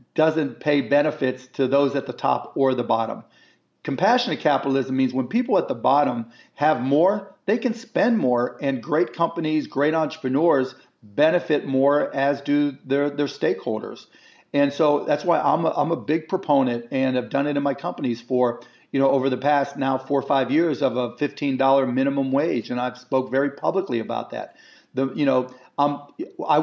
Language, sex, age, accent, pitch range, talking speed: English, male, 40-59, American, 130-150 Hz, 185 wpm